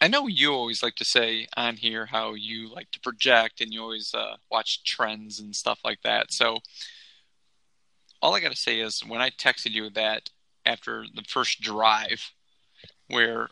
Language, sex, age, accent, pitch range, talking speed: English, male, 20-39, American, 110-125 Hz, 180 wpm